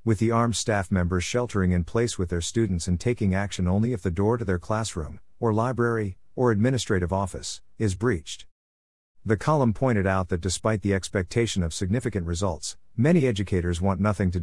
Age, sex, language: 50-69, male, English